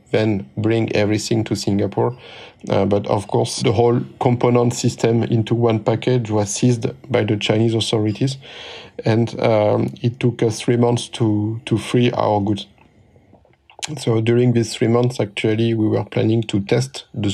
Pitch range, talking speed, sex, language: 105-120 Hz, 160 wpm, male, English